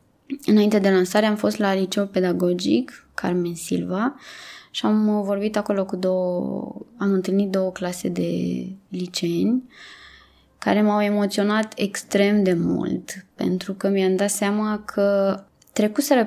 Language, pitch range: Romanian, 180-205 Hz